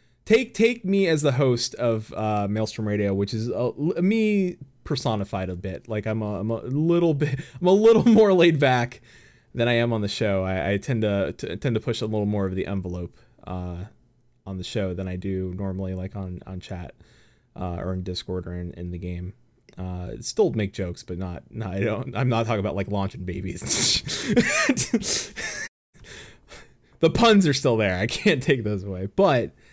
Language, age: English, 20-39